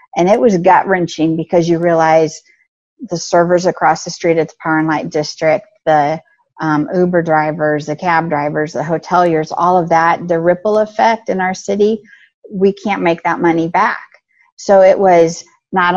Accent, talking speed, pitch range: American, 175 wpm, 165-195 Hz